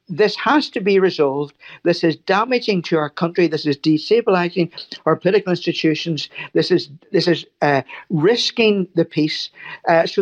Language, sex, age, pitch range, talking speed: English, male, 60-79, 155-195 Hz, 160 wpm